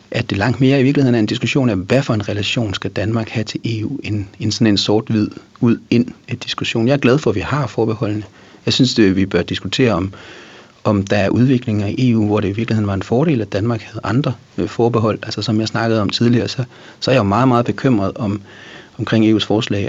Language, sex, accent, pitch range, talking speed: English, male, Danish, 100-120 Hz, 240 wpm